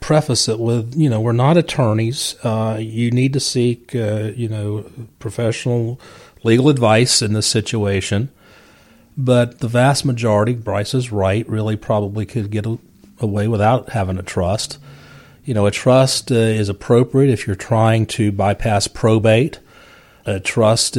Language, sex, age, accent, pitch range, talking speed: English, male, 40-59, American, 105-125 Hz, 155 wpm